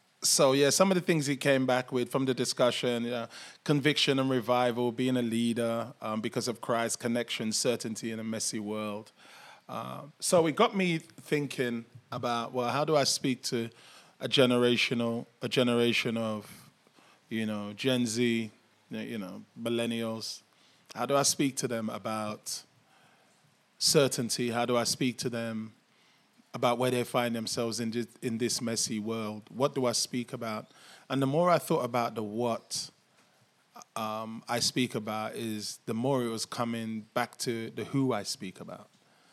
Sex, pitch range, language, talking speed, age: male, 115-130 Hz, English, 165 wpm, 20-39